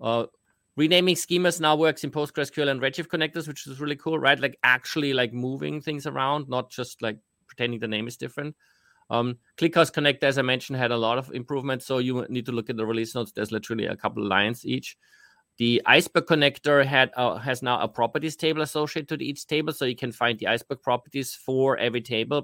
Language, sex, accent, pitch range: English, male, German, 115-145 Hz